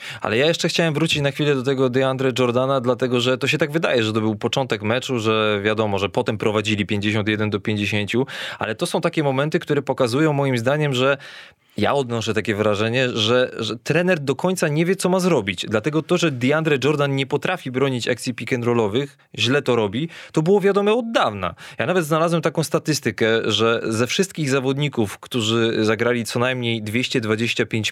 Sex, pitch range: male, 115-150 Hz